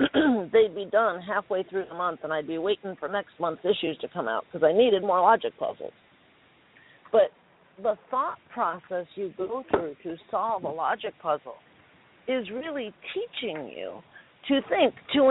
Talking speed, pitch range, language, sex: 170 wpm, 180-255 Hz, English, female